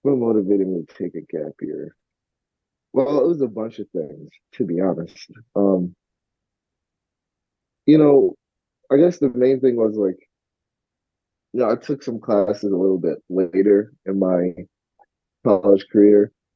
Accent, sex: American, male